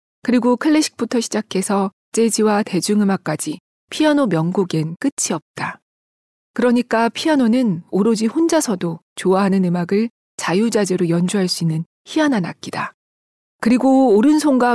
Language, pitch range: Korean, 180-240 Hz